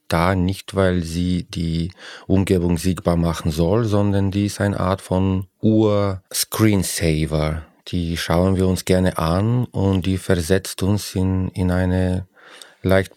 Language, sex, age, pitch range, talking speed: English, male, 40-59, 85-105 Hz, 135 wpm